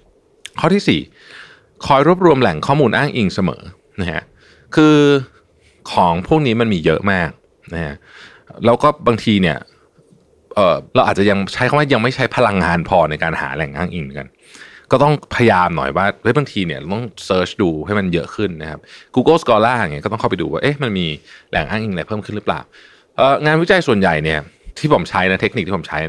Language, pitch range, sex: Thai, 90-130 Hz, male